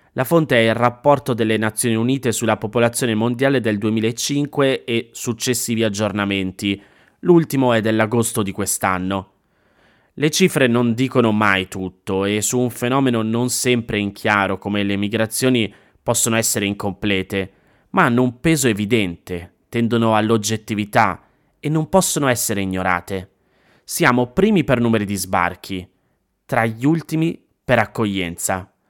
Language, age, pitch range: Italian, 20-39, 100-125 Hz